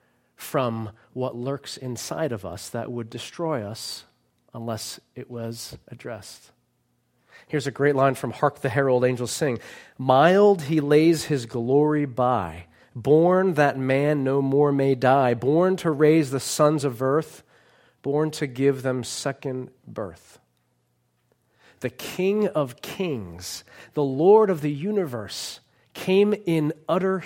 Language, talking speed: English, 135 wpm